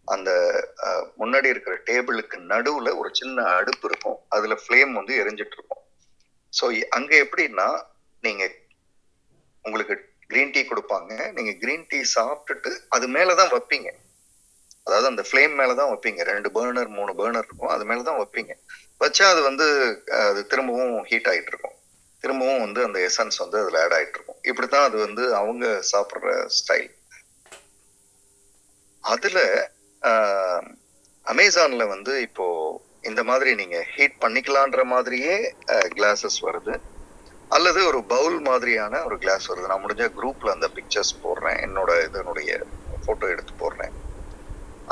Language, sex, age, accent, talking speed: Tamil, male, 30-49, native, 125 wpm